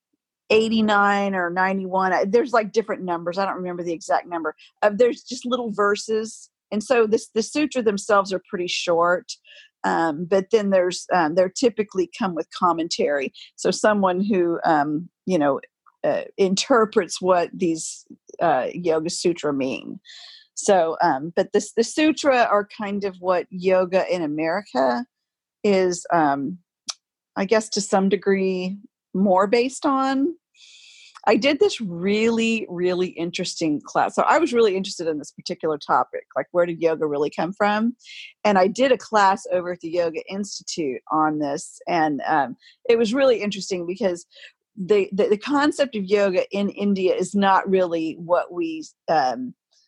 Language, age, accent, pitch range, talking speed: English, 50-69, American, 175-225 Hz, 160 wpm